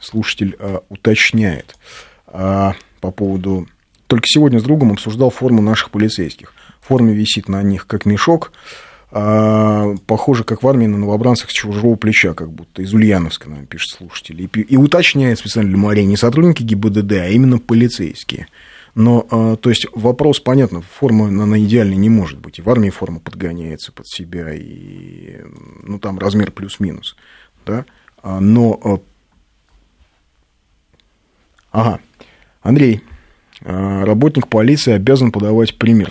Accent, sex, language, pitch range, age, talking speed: native, male, Russian, 95-120 Hz, 30-49, 135 wpm